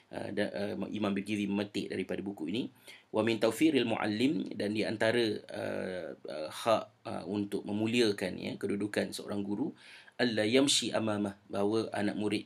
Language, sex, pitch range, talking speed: Malay, male, 100-110 Hz, 155 wpm